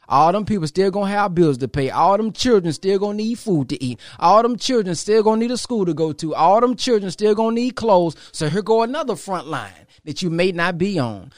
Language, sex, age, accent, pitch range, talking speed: English, male, 20-39, American, 145-195 Hz, 275 wpm